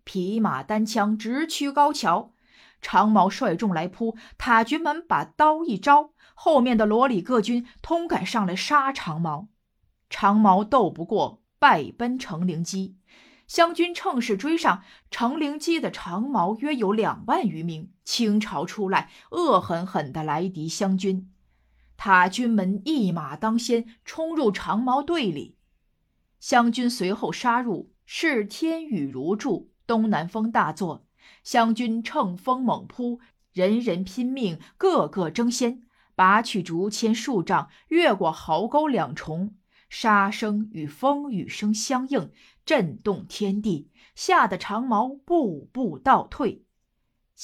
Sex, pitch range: female, 190-265 Hz